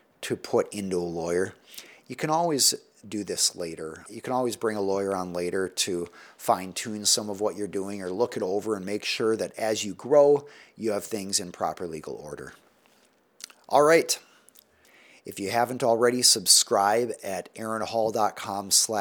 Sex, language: male, English